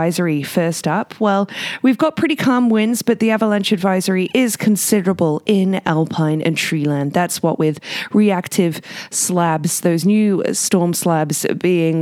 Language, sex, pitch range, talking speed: English, female, 160-210 Hz, 140 wpm